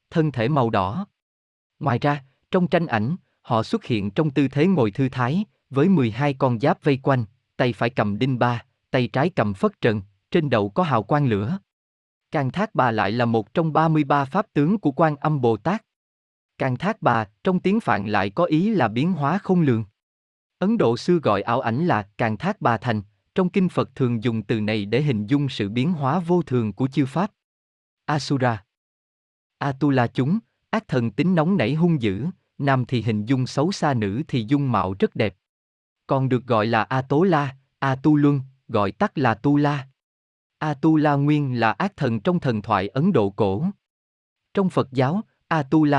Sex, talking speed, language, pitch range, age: male, 200 wpm, Vietnamese, 115-165 Hz, 20-39